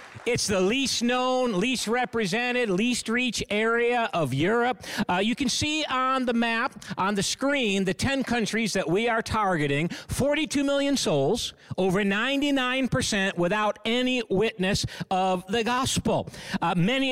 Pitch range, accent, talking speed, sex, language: 185-245 Hz, American, 145 wpm, male, English